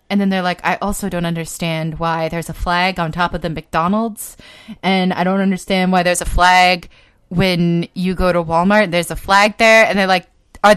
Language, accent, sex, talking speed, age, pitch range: English, American, female, 210 wpm, 20-39, 180-225 Hz